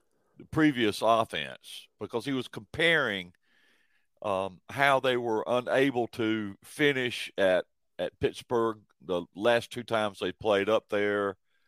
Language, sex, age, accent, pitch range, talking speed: English, male, 50-69, American, 95-120 Hz, 125 wpm